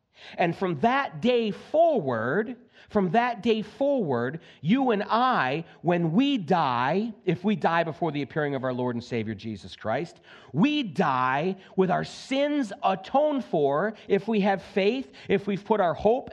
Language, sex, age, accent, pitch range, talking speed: English, male, 40-59, American, 190-230 Hz, 160 wpm